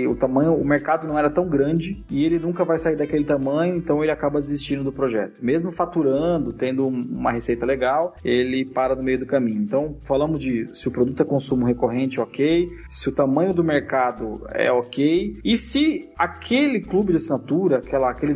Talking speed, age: 190 wpm, 20-39